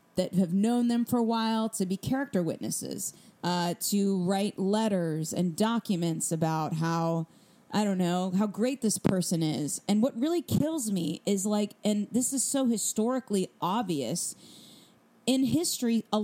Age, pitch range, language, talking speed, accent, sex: 30-49, 175-235 Hz, English, 155 wpm, American, female